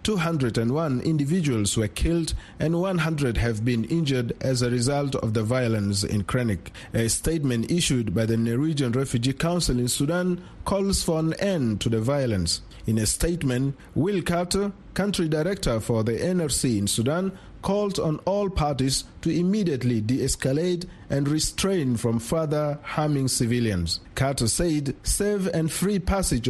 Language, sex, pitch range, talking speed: English, male, 115-170 Hz, 145 wpm